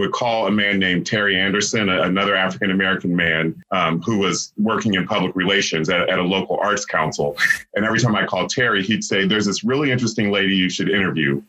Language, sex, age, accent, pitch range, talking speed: English, male, 30-49, American, 90-100 Hz, 210 wpm